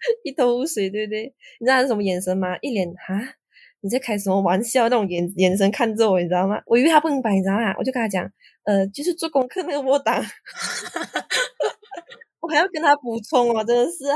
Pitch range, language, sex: 195-260 Hz, Chinese, female